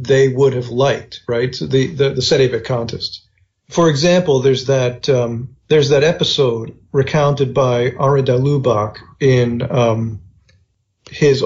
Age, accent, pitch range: 40-59, American, 120-145 Hz